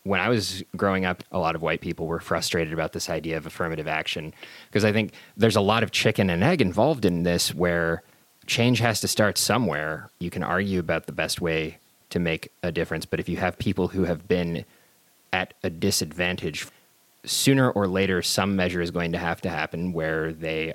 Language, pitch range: English, 80-95 Hz